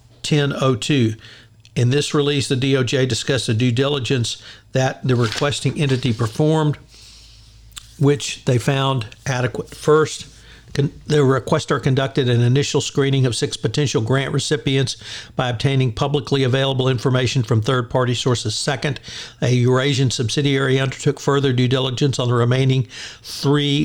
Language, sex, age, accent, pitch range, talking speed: English, male, 60-79, American, 120-140 Hz, 130 wpm